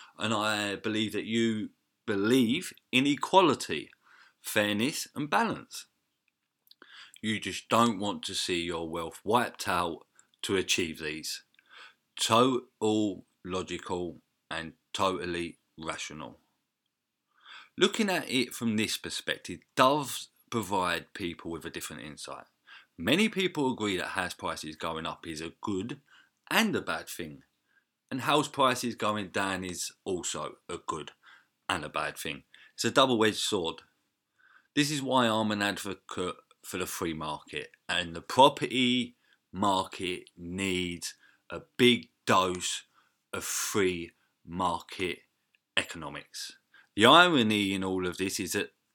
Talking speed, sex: 125 wpm, male